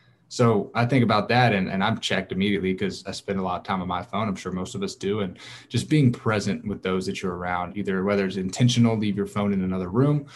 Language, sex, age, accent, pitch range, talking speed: English, male, 20-39, American, 95-115 Hz, 265 wpm